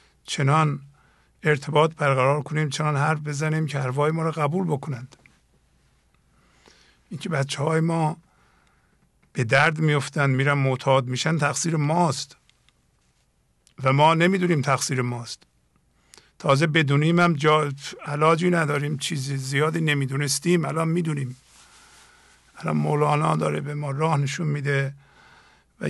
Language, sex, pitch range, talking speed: English, male, 130-155 Hz, 115 wpm